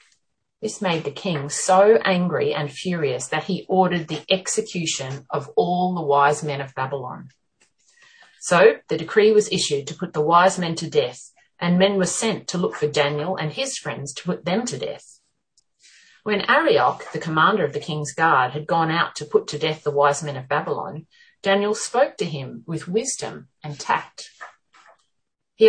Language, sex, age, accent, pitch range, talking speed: English, female, 30-49, Australian, 145-200 Hz, 180 wpm